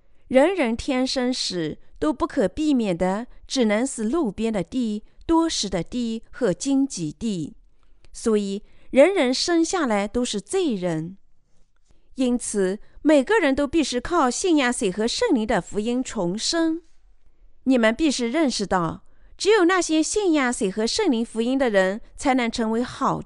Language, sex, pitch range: Chinese, female, 210-300 Hz